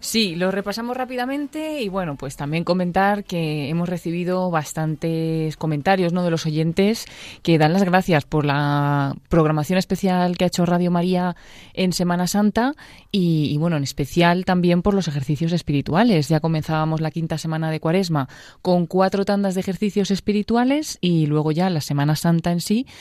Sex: female